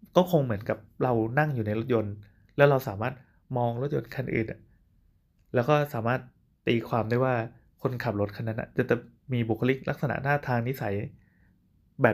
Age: 20-39